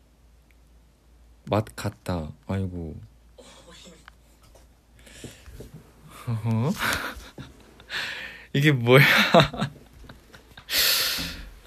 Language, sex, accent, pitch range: Korean, male, native, 75-125 Hz